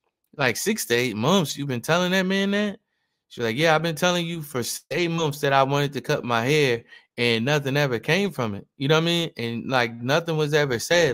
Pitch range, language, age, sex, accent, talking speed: 120-155 Hz, English, 20-39, male, American, 240 wpm